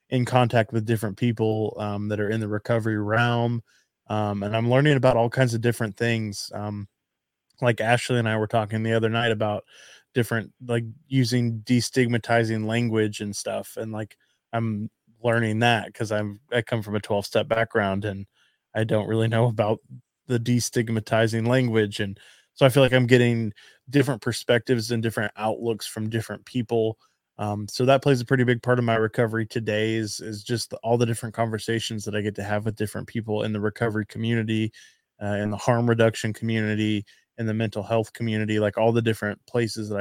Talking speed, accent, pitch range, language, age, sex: 190 wpm, American, 110-120 Hz, English, 20-39, male